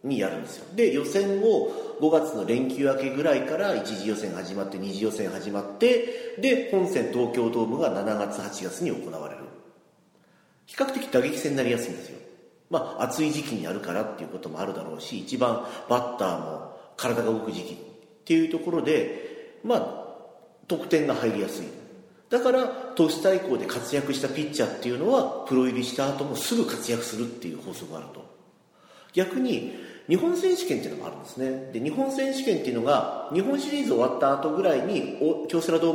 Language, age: Japanese, 40-59